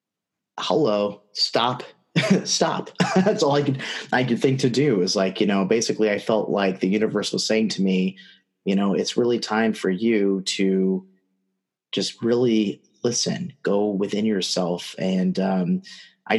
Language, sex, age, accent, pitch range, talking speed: English, male, 30-49, American, 95-110 Hz, 155 wpm